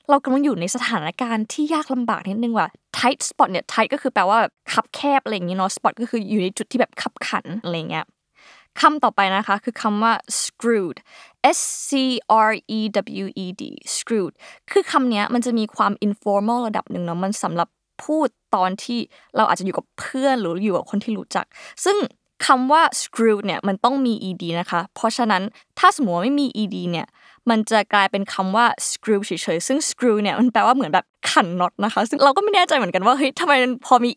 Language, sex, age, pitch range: Thai, female, 20-39, 200-255 Hz